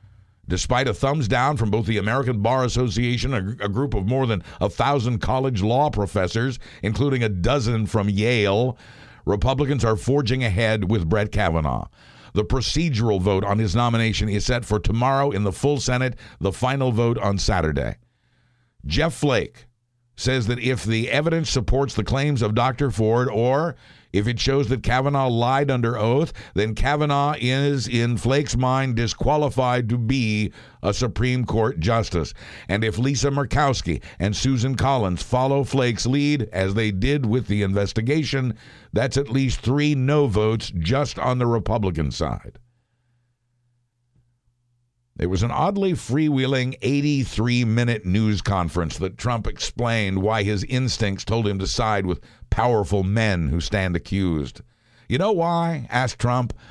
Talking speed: 150 wpm